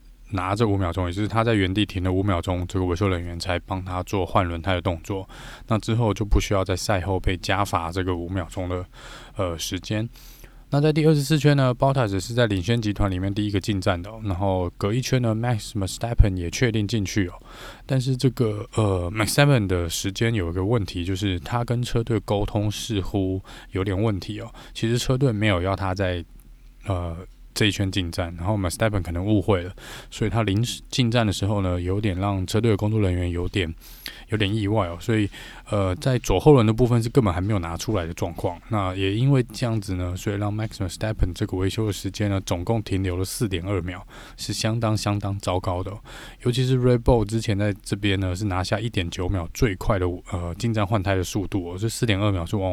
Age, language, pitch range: 20-39, Chinese, 95-115 Hz